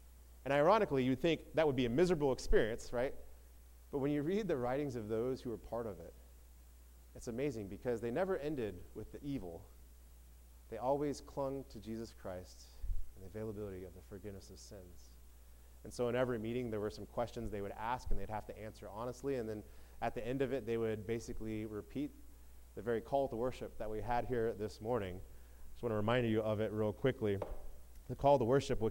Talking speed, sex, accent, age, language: 210 wpm, male, American, 30-49, English